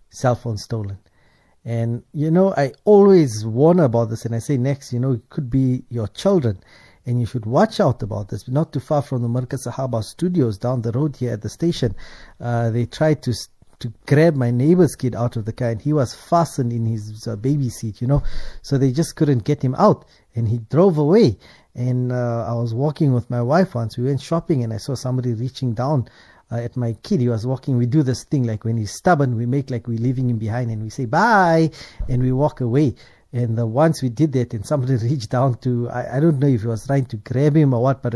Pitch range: 115-150 Hz